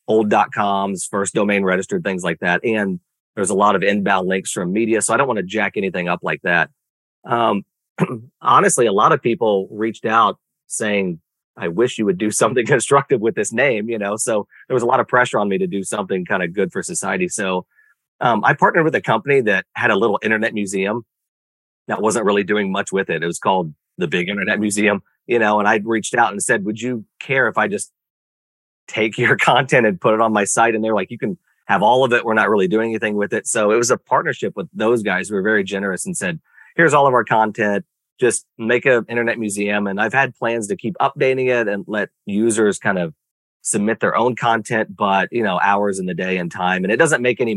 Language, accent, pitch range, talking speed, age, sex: German, American, 100-115 Hz, 235 wpm, 30-49, male